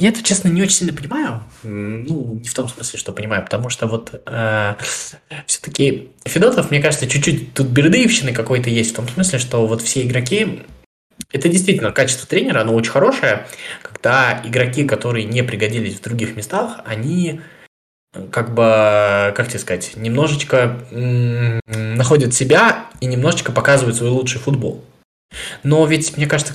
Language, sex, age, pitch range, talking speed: Russian, male, 20-39, 110-150 Hz, 155 wpm